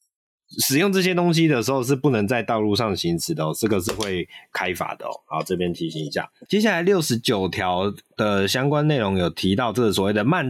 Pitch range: 100-150 Hz